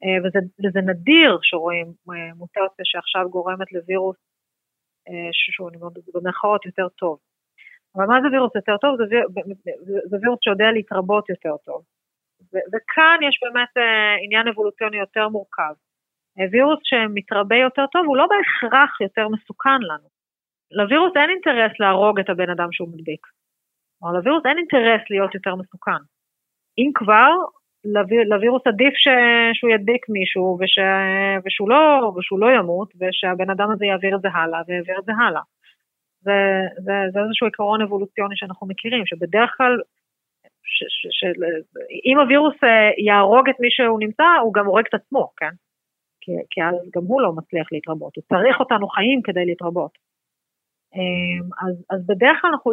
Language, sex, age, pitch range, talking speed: Hebrew, female, 30-49, 185-240 Hz, 150 wpm